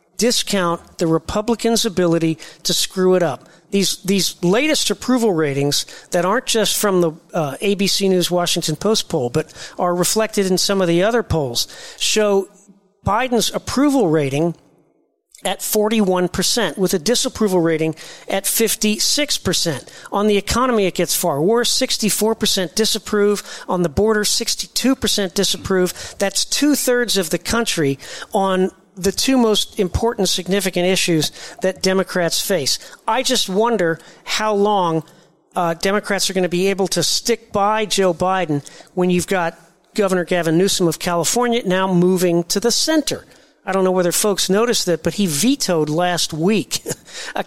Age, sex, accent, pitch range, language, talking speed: 40-59, male, American, 175-215 Hz, English, 150 wpm